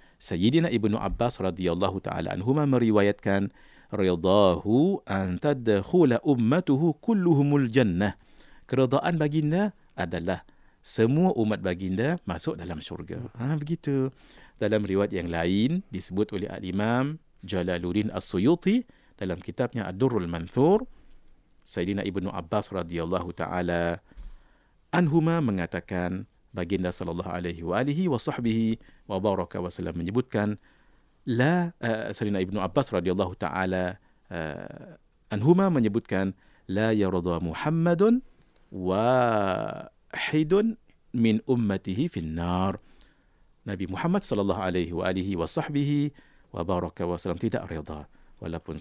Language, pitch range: English, 90-130 Hz